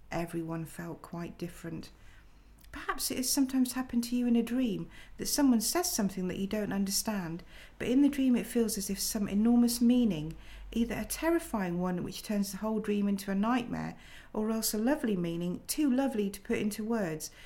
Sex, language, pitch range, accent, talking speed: female, English, 185-230 Hz, British, 195 wpm